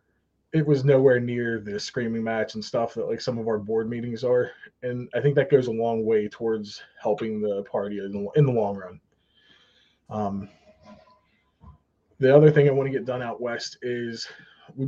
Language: English